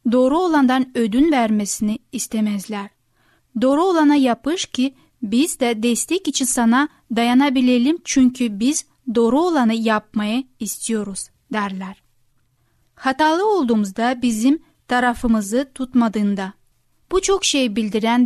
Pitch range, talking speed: 215-265 Hz, 100 wpm